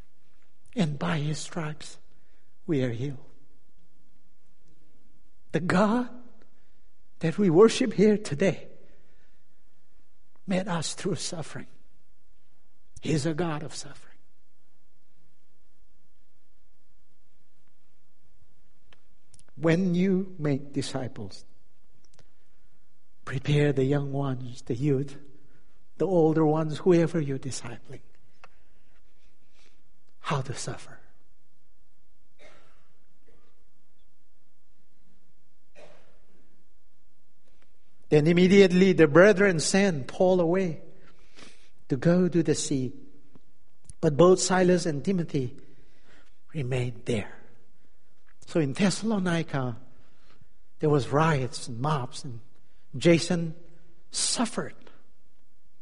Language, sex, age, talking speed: English, male, 60-79, 75 wpm